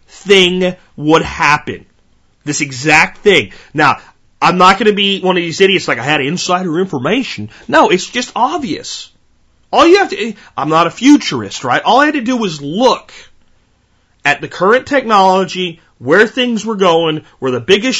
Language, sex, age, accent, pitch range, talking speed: English, male, 30-49, American, 145-205 Hz, 170 wpm